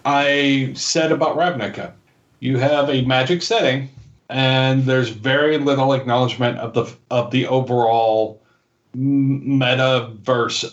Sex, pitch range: male, 120-145 Hz